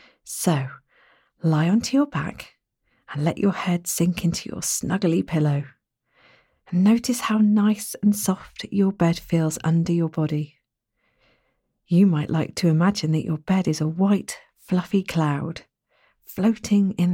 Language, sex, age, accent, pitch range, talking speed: English, female, 40-59, British, 160-195 Hz, 145 wpm